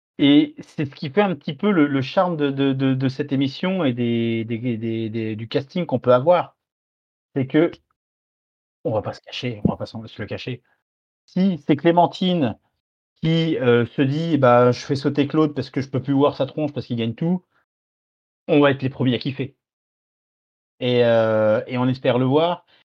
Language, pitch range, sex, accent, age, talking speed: French, 115-145 Hz, male, French, 30-49, 195 wpm